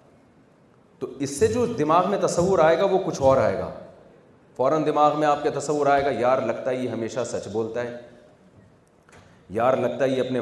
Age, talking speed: 40-59, 190 wpm